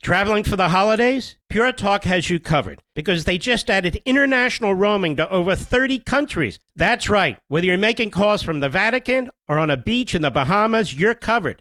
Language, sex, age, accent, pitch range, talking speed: English, male, 50-69, American, 180-235 Hz, 190 wpm